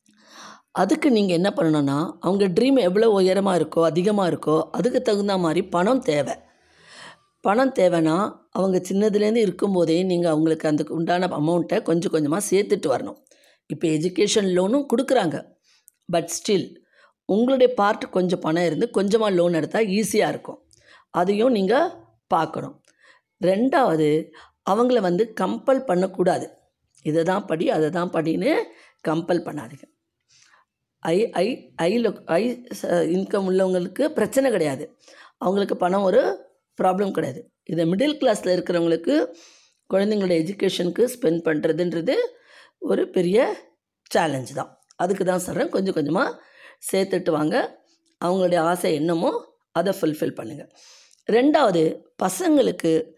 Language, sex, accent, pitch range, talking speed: Tamil, female, native, 165-220 Hz, 110 wpm